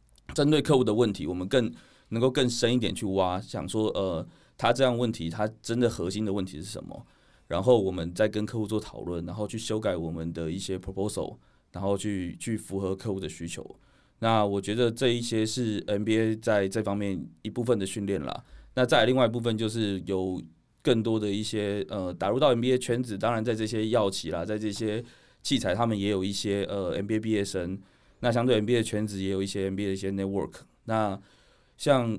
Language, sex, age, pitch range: Chinese, male, 20-39, 95-110 Hz